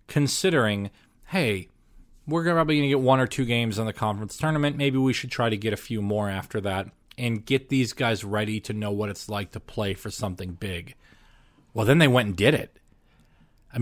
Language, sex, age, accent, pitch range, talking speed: English, male, 30-49, American, 105-130 Hz, 215 wpm